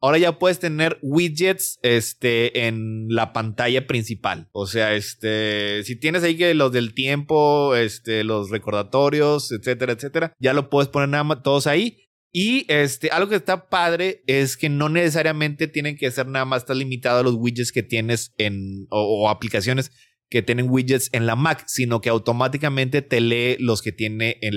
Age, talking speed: 20-39, 180 wpm